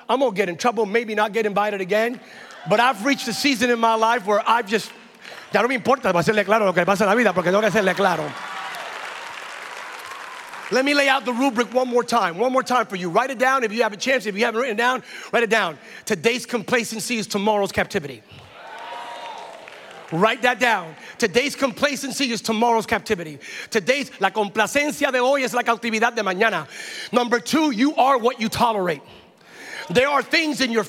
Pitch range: 220-280 Hz